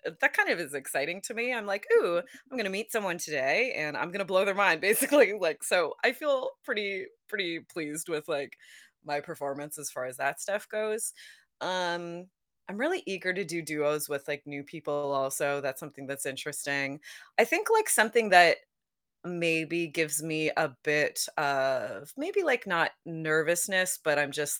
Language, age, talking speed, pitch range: English, 20-39, 180 wpm, 150-200 Hz